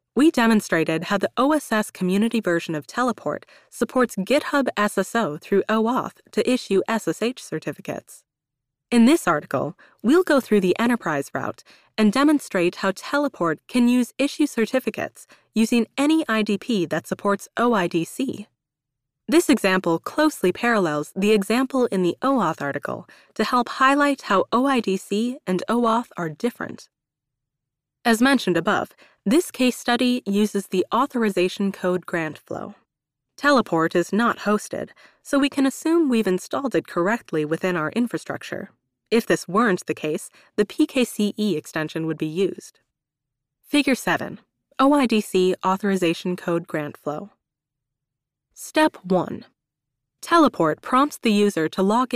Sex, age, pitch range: female, 20-39, 170-245 Hz